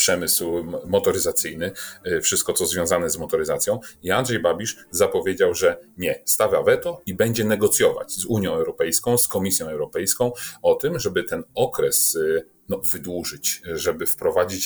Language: Polish